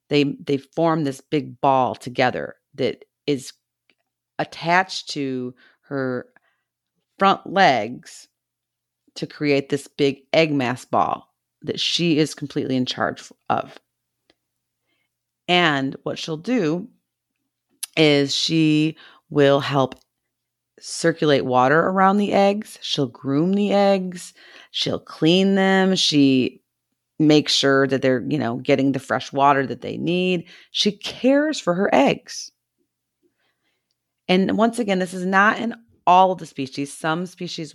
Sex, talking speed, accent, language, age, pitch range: female, 125 wpm, American, English, 40-59, 135-180 Hz